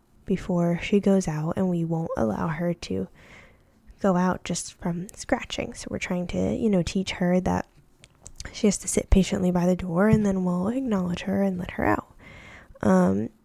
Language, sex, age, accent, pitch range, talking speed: English, female, 10-29, American, 180-205 Hz, 185 wpm